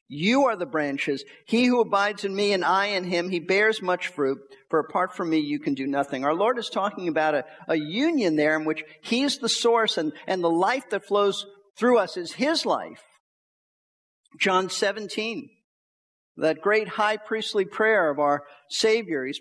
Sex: male